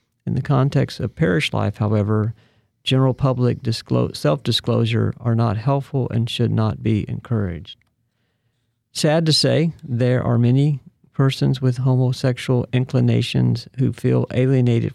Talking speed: 130 wpm